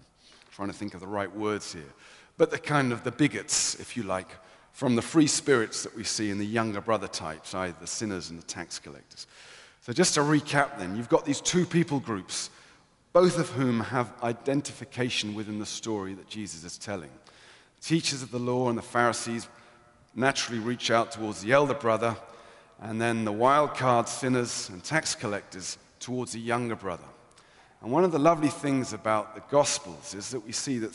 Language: English